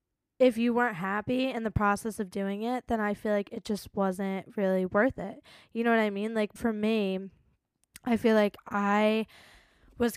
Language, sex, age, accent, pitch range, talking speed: English, female, 10-29, American, 190-215 Hz, 195 wpm